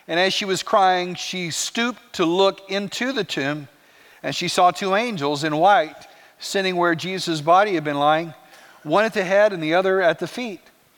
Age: 50-69